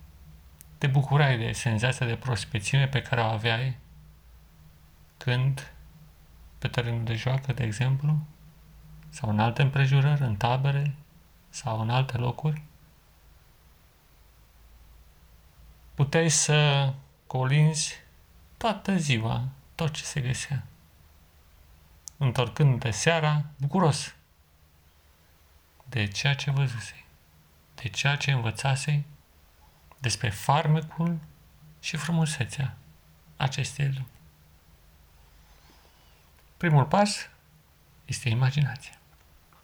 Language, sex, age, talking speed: Romanian, male, 40-59, 85 wpm